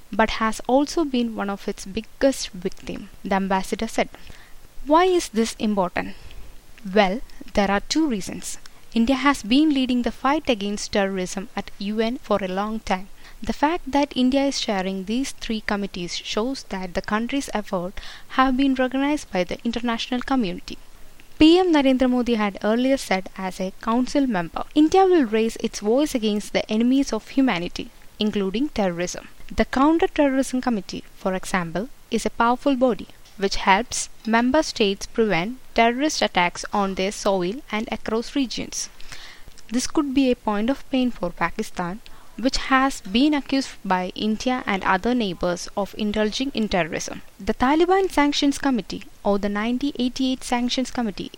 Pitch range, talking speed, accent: 200-270 Hz, 155 wpm, Indian